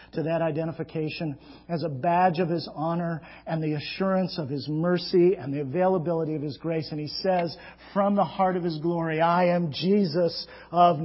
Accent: American